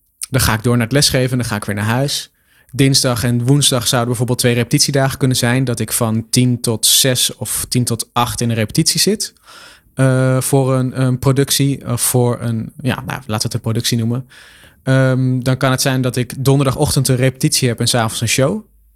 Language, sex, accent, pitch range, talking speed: Dutch, male, Dutch, 110-130 Hz, 210 wpm